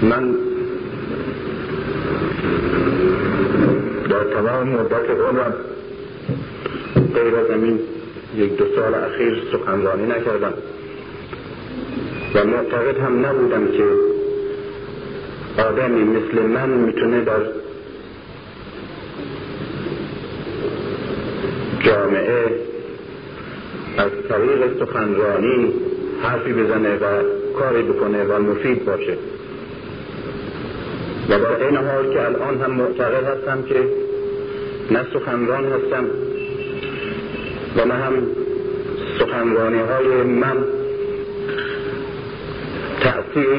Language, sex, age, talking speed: Persian, male, 50-69, 75 wpm